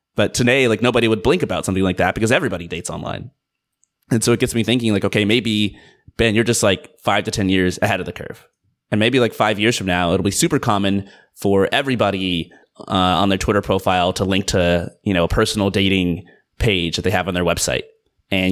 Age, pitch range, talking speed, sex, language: 30-49, 95-115 Hz, 225 wpm, male, English